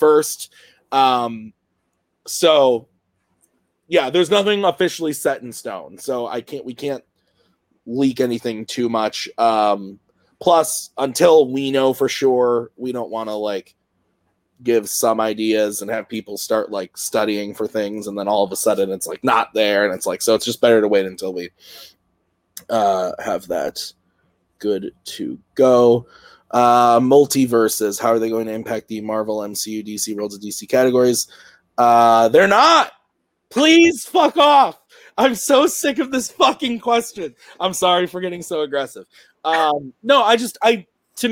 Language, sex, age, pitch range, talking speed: English, male, 20-39, 110-185 Hz, 160 wpm